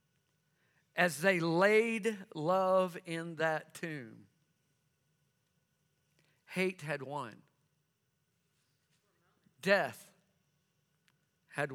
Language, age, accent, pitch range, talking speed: English, 50-69, American, 150-215 Hz, 60 wpm